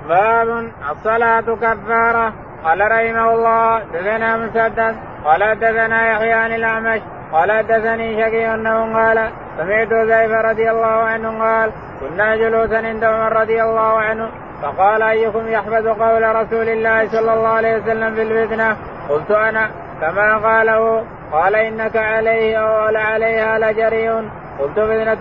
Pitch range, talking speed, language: 220-225 Hz, 120 wpm, Arabic